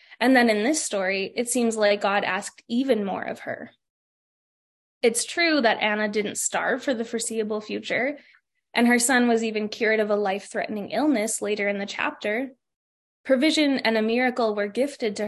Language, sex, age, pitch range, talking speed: English, female, 20-39, 215-260 Hz, 175 wpm